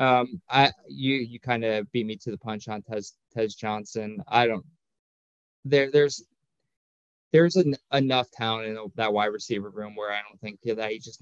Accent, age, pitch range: American, 20-39, 110-120 Hz